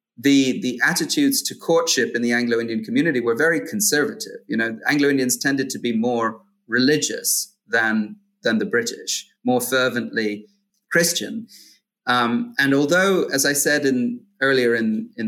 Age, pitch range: 30-49, 115-185 Hz